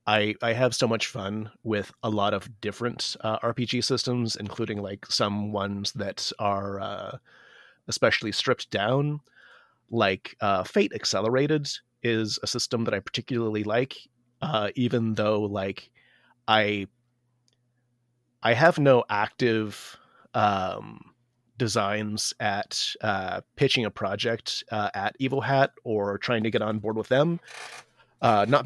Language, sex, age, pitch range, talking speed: English, male, 30-49, 105-125 Hz, 135 wpm